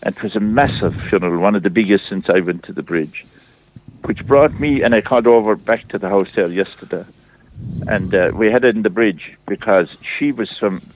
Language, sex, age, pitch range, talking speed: English, male, 60-79, 100-130 Hz, 235 wpm